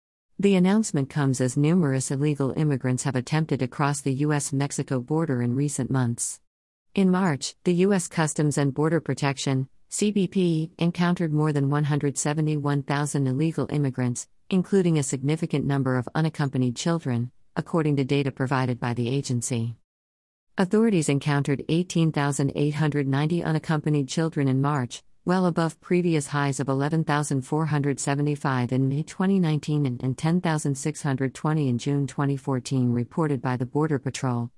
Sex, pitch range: female, 130-160 Hz